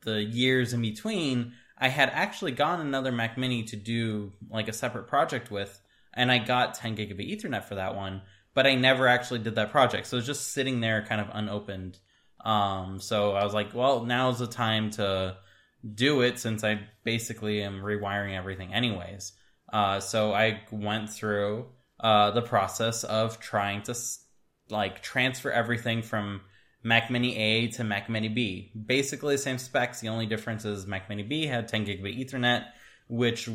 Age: 20-39